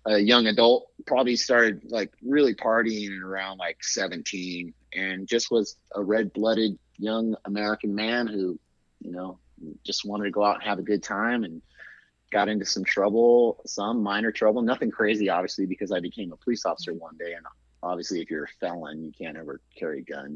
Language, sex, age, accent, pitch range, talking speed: English, male, 30-49, American, 100-120 Hz, 190 wpm